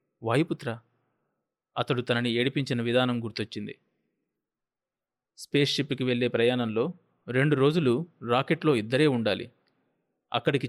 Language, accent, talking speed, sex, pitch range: Telugu, native, 85 wpm, male, 120-150 Hz